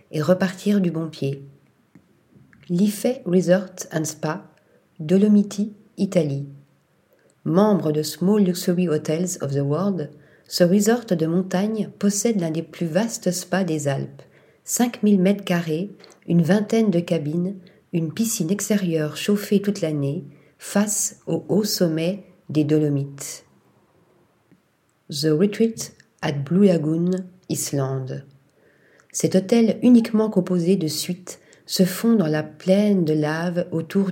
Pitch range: 160-200 Hz